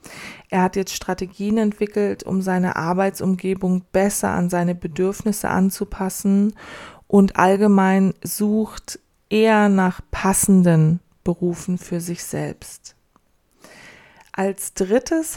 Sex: female